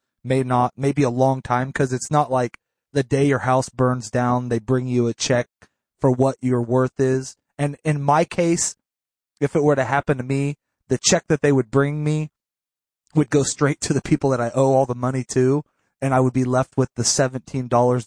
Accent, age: American, 30-49